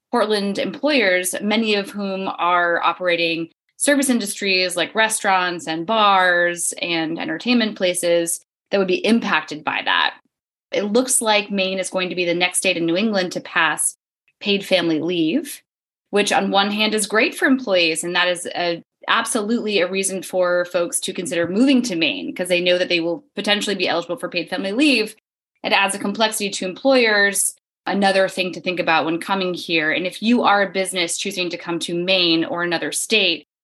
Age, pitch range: 20-39, 180-220 Hz